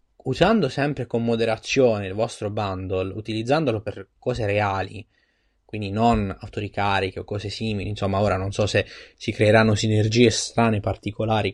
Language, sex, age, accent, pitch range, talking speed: Italian, male, 20-39, native, 100-130 Hz, 140 wpm